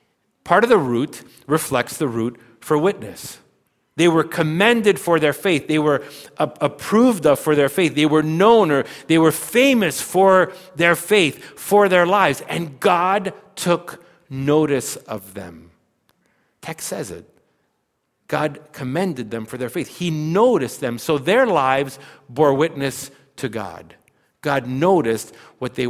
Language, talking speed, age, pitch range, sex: English, 150 wpm, 50-69, 115-170 Hz, male